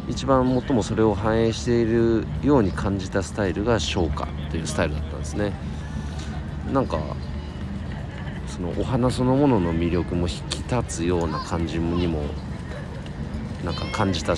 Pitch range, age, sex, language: 80-110 Hz, 50-69, male, Japanese